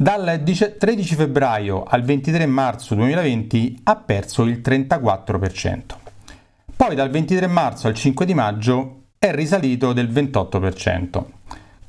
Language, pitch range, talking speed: Italian, 105-155 Hz, 115 wpm